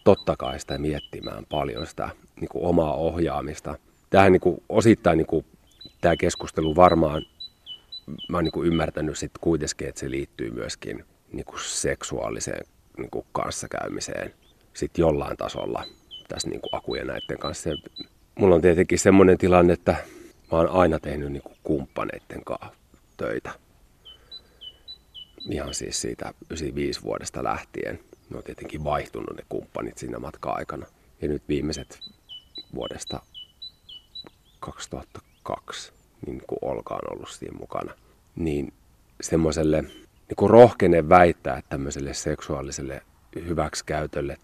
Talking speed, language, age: 115 wpm, Finnish, 30-49